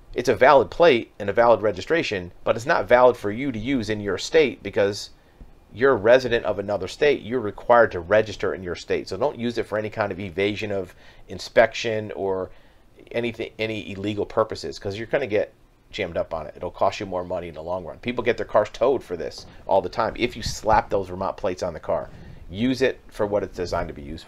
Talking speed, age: 235 wpm, 40-59